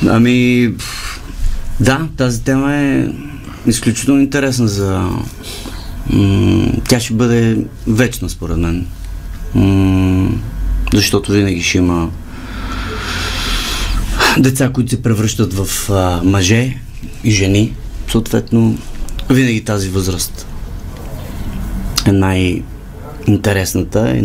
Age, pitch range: 30-49, 90-115 Hz